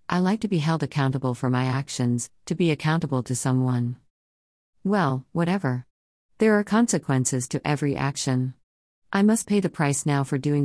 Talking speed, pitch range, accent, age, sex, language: 170 wpm, 130-155 Hz, American, 50-69, female, English